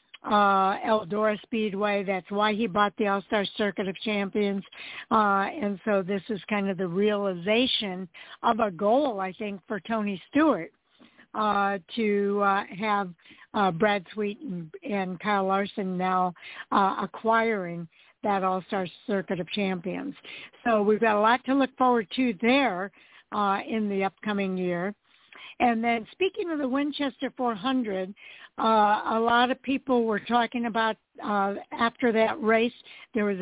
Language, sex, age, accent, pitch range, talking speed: English, female, 60-79, American, 200-235 Hz, 150 wpm